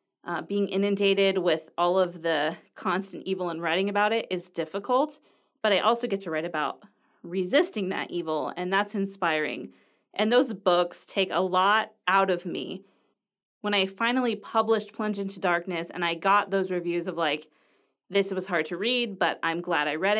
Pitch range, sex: 180-220 Hz, female